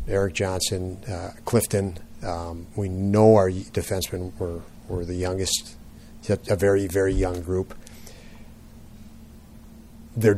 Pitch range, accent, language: 90-105 Hz, American, English